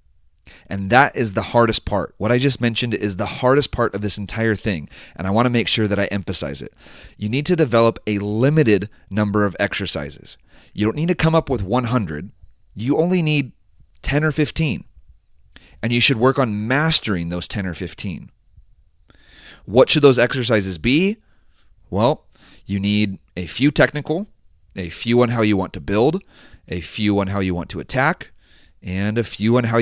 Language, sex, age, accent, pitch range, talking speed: English, male, 30-49, American, 95-125 Hz, 185 wpm